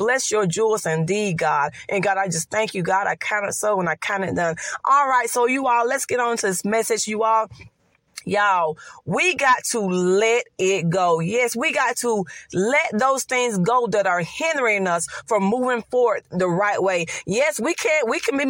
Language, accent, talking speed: English, American, 210 wpm